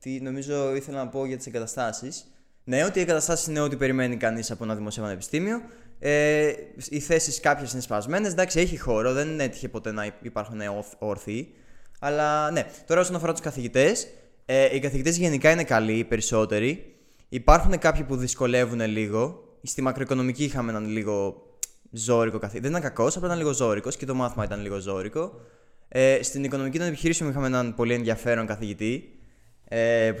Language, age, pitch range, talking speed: Greek, 20-39, 110-145 Hz, 175 wpm